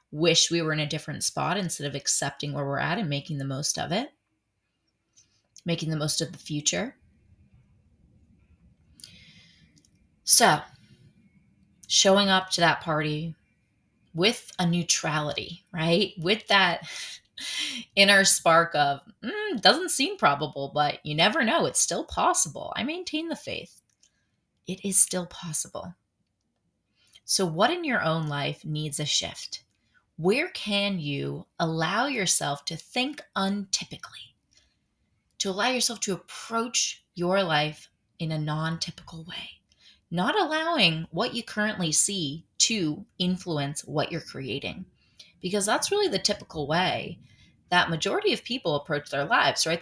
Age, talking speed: 20-39, 135 wpm